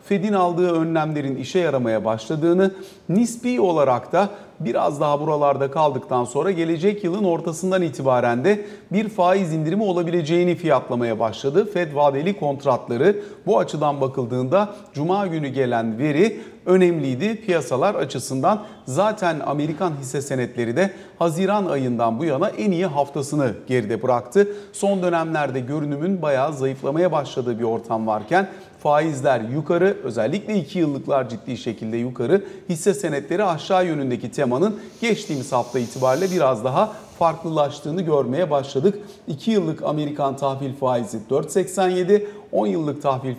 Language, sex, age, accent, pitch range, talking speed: Turkish, male, 40-59, native, 135-190 Hz, 125 wpm